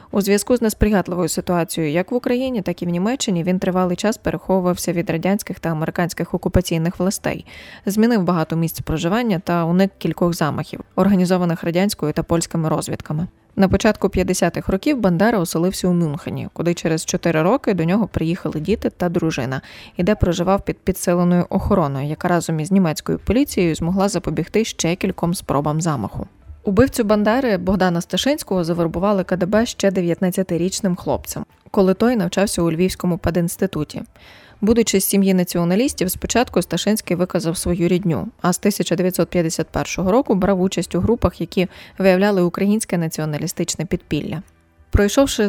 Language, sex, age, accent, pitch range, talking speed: Ukrainian, female, 20-39, native, 170-200 Hz, 140 wpm